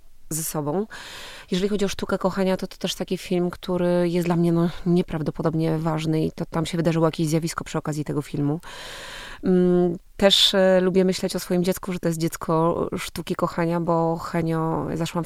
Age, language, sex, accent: 20-39, Polish, female, native